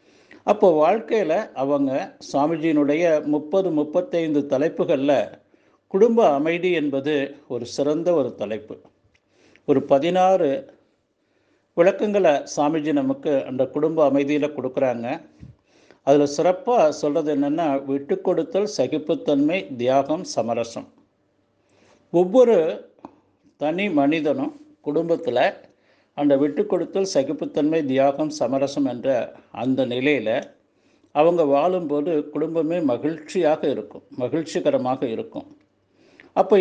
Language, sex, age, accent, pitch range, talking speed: Tamil, male, 50-69, native, 140-180 Hz, 85 wpm